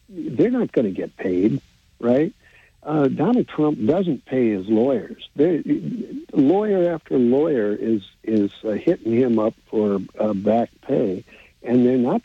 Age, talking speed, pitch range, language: 60-79, 155 wpm, 105-135 Hz, English